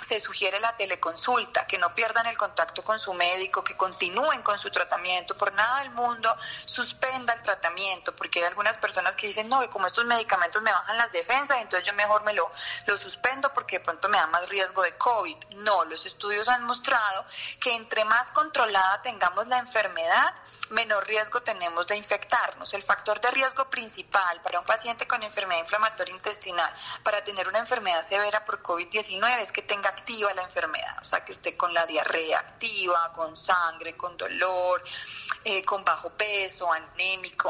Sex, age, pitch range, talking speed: female, 20-39, 180-230 Hz, 180 wpm